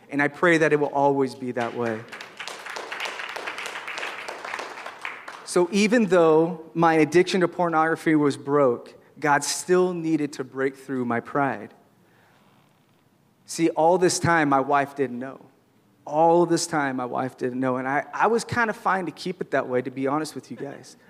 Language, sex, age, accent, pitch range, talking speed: English, male, 30-49, American, 135-175 Hz, 170 wpm